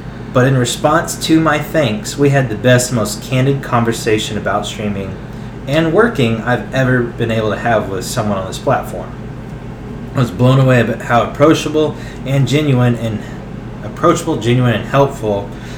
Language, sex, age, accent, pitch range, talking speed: English, male, 20-39, American, 110-135 Hz, 160 wpm